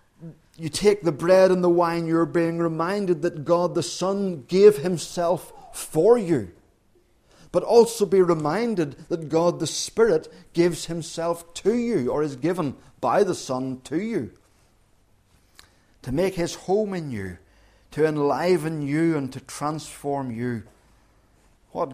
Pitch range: 105-170 Hz